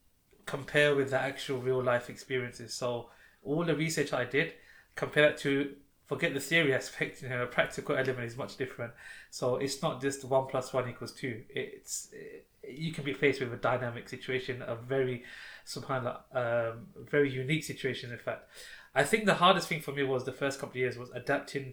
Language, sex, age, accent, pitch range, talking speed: English, male, 20-39, British, 125-145 Hz, 200 wpm